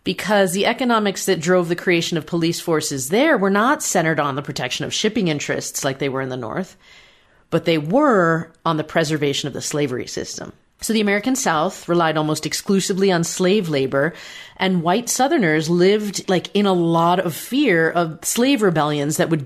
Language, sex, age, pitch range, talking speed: English, female, 40-59, 155-205 Hz, 190 wpm